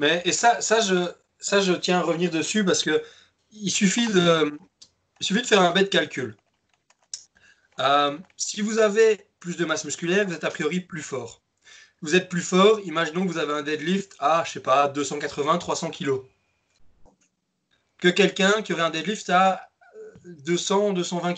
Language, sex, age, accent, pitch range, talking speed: French, male, 20-39, French, 165-210 Hz, 170 wpm